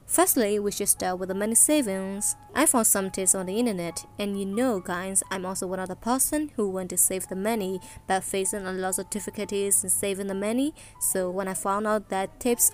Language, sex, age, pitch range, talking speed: English, female, 20-39, 190-220 Hz, 225 wpm